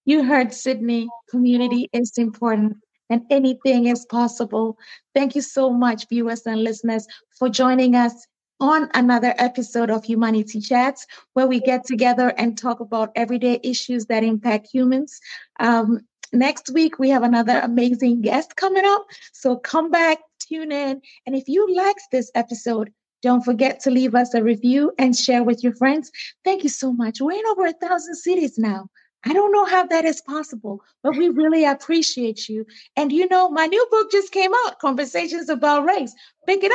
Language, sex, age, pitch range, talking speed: English, female, 30-49, 240-320 Hz, 175 wpm